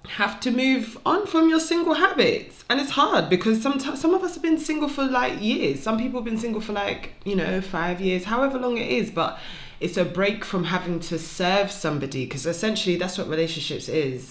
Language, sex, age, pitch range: English, female, 20-39, 140-180 Hz